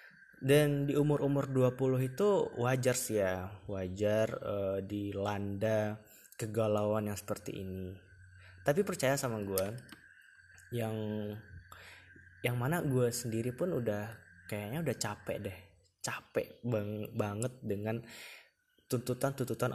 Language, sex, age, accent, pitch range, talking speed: Indonesian, male, 20-39, native, 100-130 Hz, 105 wpm